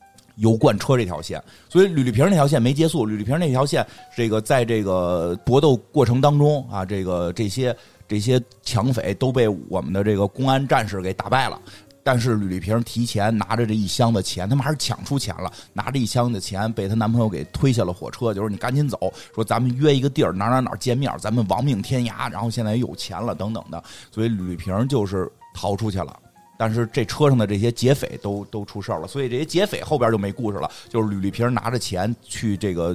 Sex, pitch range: male, 100-130 Hz